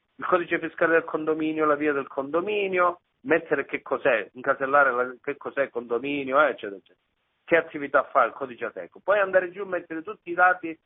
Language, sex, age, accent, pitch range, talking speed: Italian, male, 40-59, native, 130-175 Hz, 180 wpm